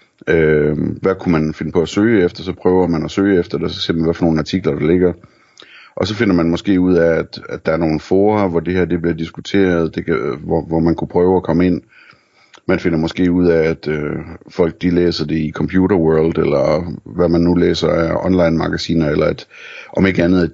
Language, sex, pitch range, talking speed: Danish, male, 80-90 Hz, 240 wpm